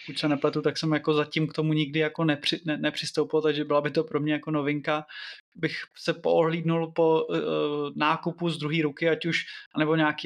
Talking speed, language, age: 205 wpm, Czech, 20-39